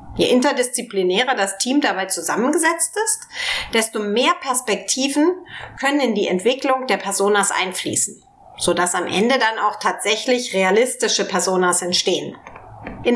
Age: 30-49